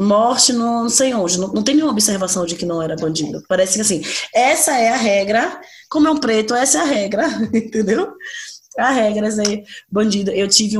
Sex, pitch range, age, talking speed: female, 175-235 Hz, 20-39, 210 wpm